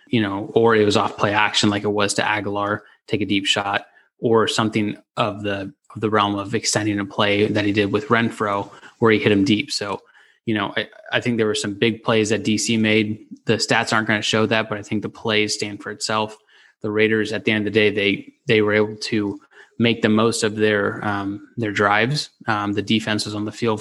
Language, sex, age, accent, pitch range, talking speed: English, male, 20-39, American, 105-115 Hz, 240 wpm